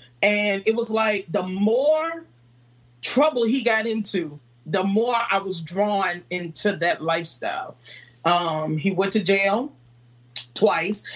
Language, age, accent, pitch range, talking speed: English, 40-59, American, 150-195 Hz, 130 wpm